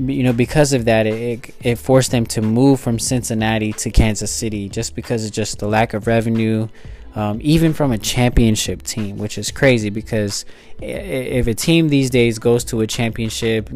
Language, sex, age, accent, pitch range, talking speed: English, male, 20-39, American, 105-125 Hz, 190 wpm